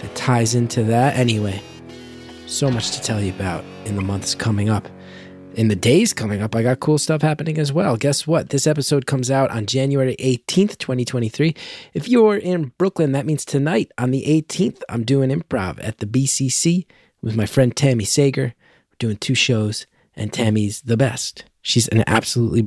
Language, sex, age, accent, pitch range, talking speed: English, male, 20-39, American, 110-145 Hz, 185 wpm